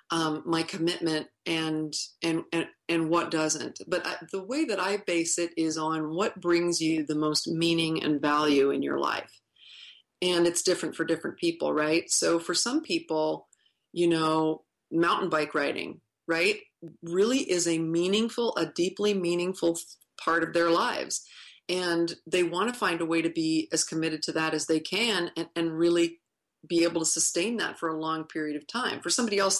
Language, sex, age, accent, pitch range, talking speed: English, female, 40-59, American, 160-180 Hz, 180 wpm